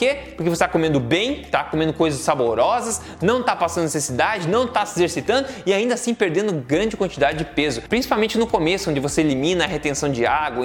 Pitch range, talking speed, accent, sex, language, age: 155-200 Hz, 210 wpm, Brazilian, male, Portuguese, 20-39